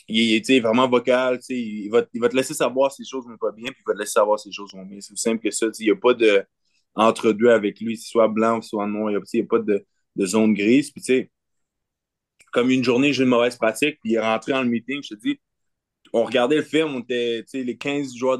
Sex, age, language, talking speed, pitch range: male, 20-39, French, 275 wpm, 115-140 Hz